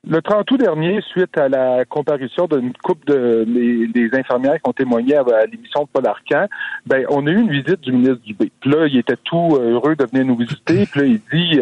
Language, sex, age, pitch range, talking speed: French, male, 50-69, 125-155 Hz, 225 wpm